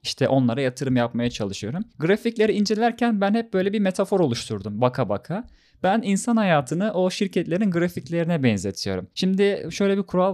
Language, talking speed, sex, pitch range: Turkish, 150 wpm, male, 130-185 Hz